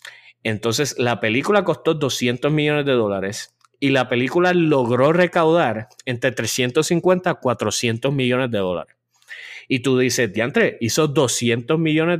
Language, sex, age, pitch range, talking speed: English, male, 30-49, 115-160 Hz, 135 wpm